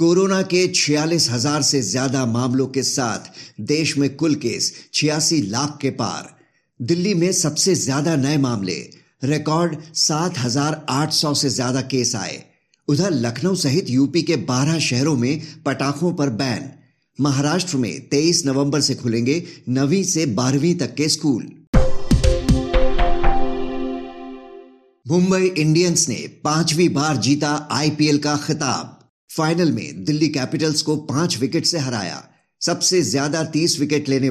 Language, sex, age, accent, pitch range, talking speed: Hindi, male, 50-69, native, 130-160 Hz, 135 wpm